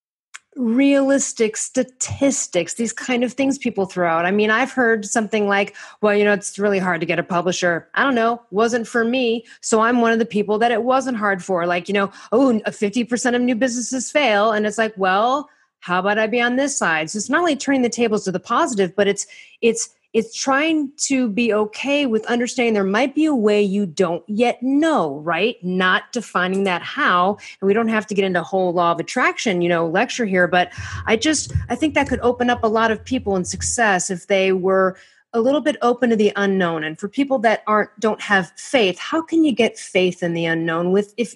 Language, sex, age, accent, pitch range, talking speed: English, female, 30-49, American, 195-250 Hz, 225 wpm